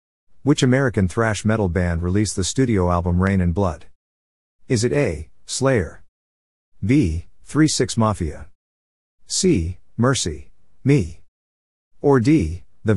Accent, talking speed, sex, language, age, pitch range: American, 115 wpm, male, English, 50-69, 80-135 Hz